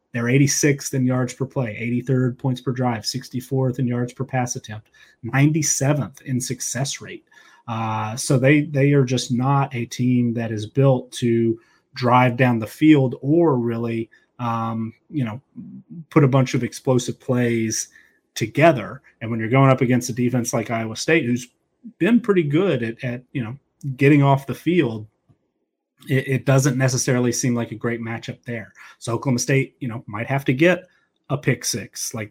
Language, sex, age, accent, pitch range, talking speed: English, male, 30-49, American, 115-140 Hz, 175 wpm